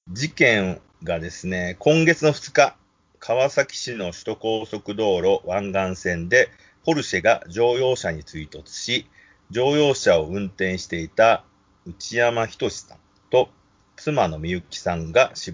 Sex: male